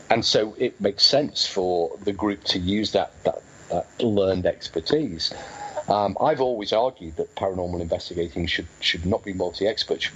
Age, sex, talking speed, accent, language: 50-69, male, 165 wpm, British, English